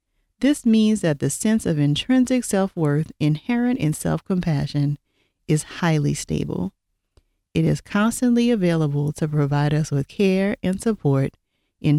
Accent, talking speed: American, 130 wpm